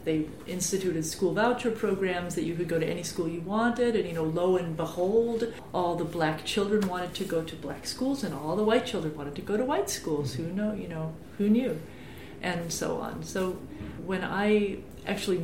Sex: female